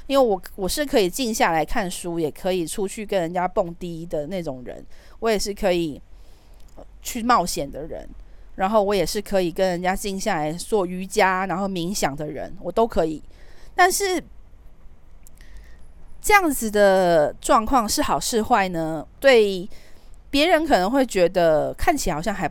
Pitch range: 170-230 Hz